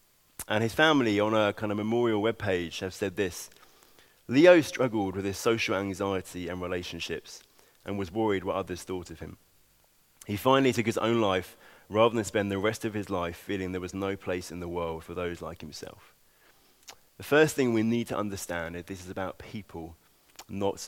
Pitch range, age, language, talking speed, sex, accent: 95-120 Hz, 30-49, English, 195 wpm, male, British